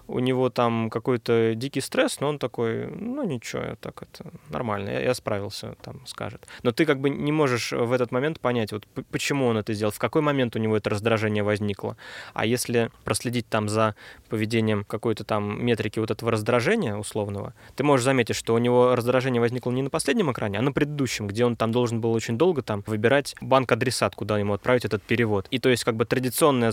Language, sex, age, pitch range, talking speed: Russian, male, 20-39, 110-125 Hz, 205 wpm